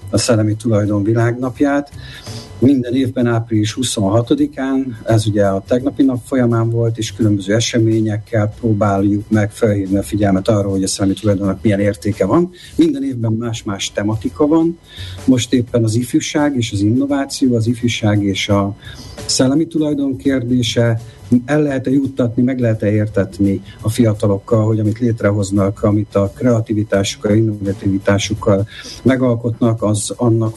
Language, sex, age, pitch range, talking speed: Hungarian, male, 50-69, 105-125 Hz, 135 wpm